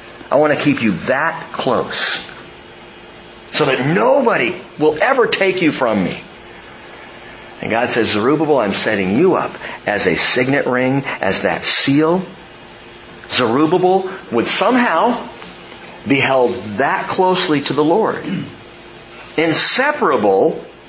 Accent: American